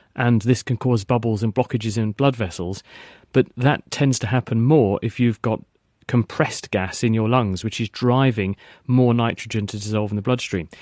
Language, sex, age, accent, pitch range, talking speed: English, male, 40-59, British, 105-125 Hz, 190 wpm